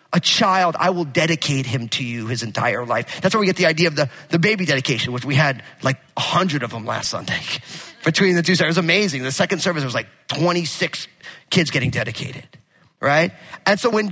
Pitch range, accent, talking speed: 145-210 Hz, American, 215 wpm